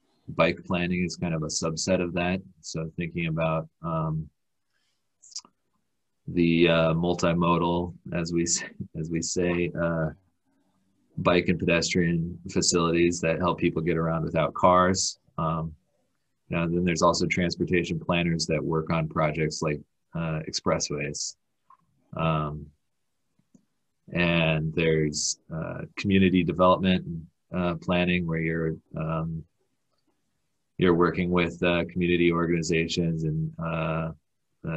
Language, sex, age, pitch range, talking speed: English, male, 30-49, 80-90 Hz, 115 wpm